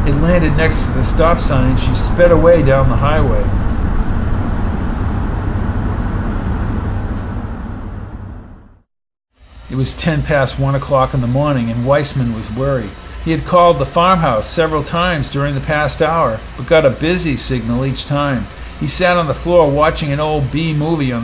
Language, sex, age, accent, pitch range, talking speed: English, male, 50-69, American, 110-155 Hz, 155 wpm